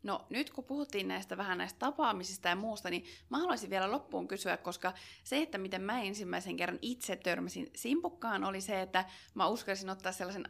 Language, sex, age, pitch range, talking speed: Finnish, female, 20-39, 180-220 Hz, 190 wpm